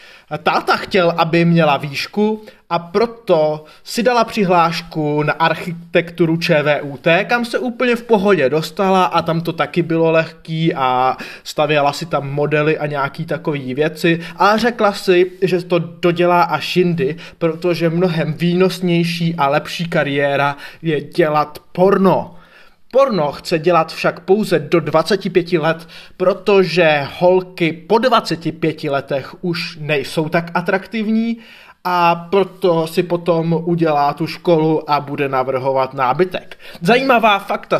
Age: 20-39